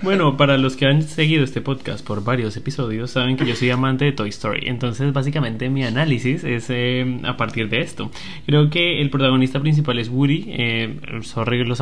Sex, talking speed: male, 200 wpm